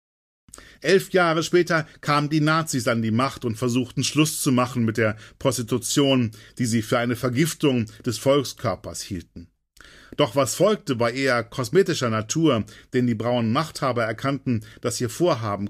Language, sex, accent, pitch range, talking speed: German, male, German, 115-145 Hz, 155 wpm